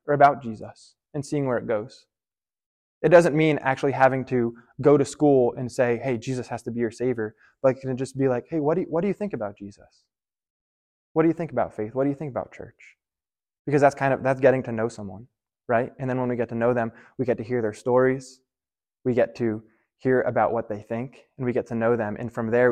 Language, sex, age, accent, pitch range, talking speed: English, male, 20-39, American, 115-145 Hz, 245 wpm